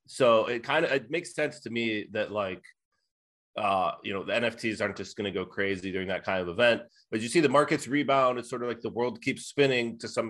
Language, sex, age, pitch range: English, male, 30-49, 105-135 Hz